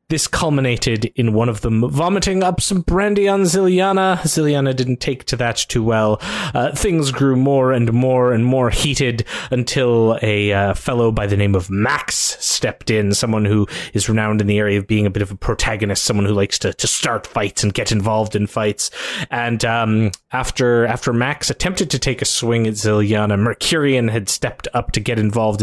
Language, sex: English, male